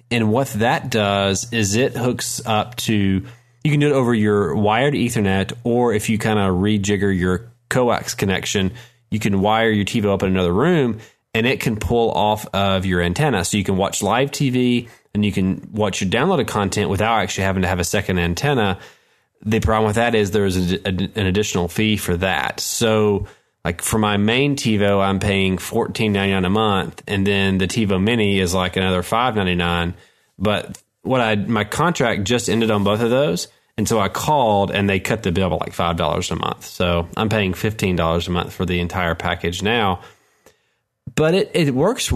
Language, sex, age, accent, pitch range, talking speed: English, male, 20-39, American, 95-115 Hz, 195 wpm